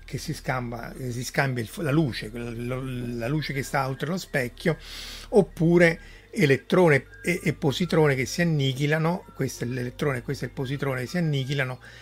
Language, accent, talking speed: Italian, native, 180 wpm